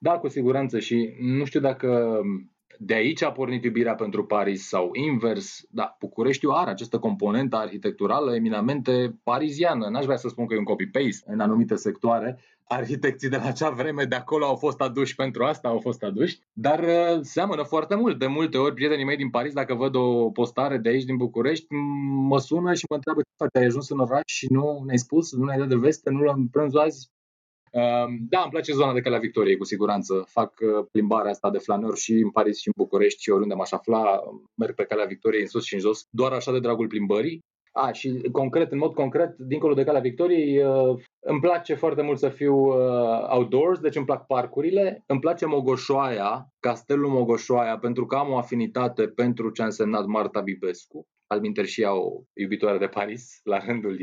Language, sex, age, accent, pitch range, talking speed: Romanian, male, 20-39, native, 120-150 Hz, 195 wpm